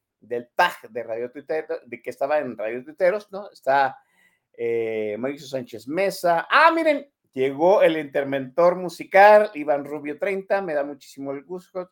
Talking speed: 155 wpm